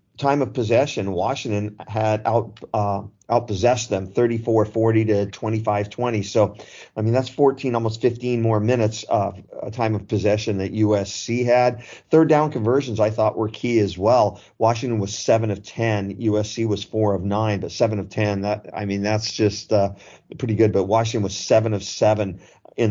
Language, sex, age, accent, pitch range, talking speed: English, male, 40-59, American, 100-115 Hz, 175 wpm